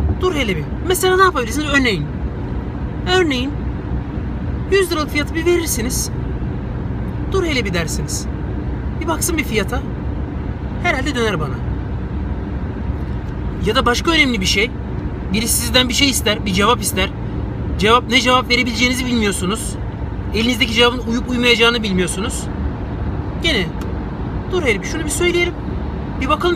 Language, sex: Turkish, male